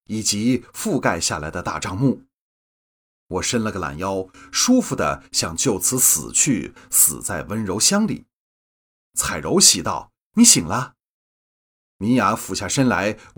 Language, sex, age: Chinese, male, 30-49